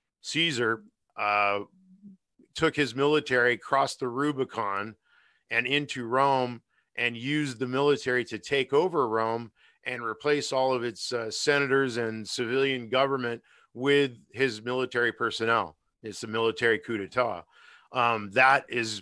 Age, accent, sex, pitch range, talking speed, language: 50-69, American, male, 105-130 Hz, 130 wpm, English